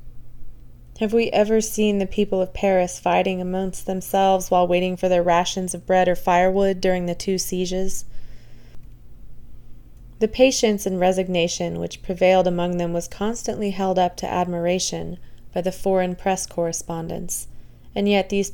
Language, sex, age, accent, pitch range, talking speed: English, female, 20-39, American, 175-200 Hz, 150 wpm